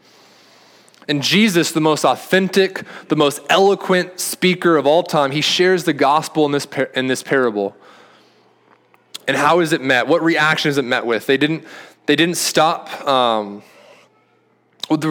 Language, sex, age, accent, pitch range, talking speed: English, male, 20-39, American, 130-155 Hz, 160 wpm